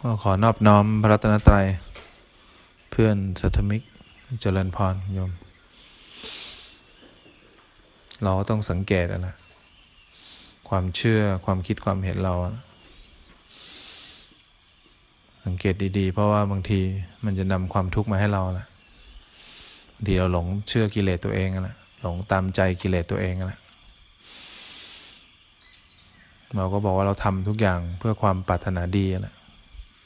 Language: English